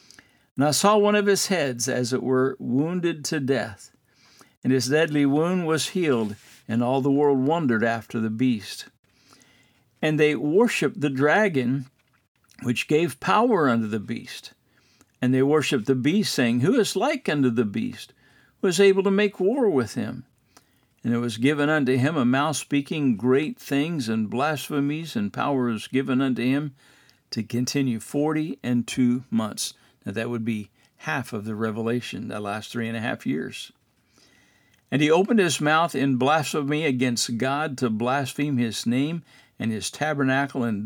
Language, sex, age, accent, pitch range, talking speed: English, male, 60-79, American, 120-150 Hz, 165 wpm